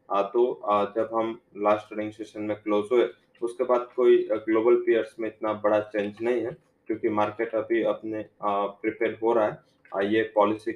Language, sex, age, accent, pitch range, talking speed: English, male, 20-39, Indian, 105-115 Hz, 165 wpm